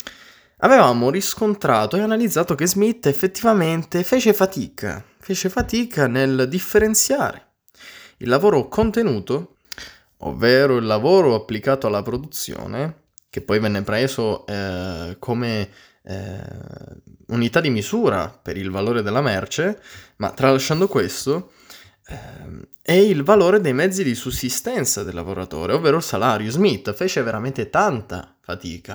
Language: Italian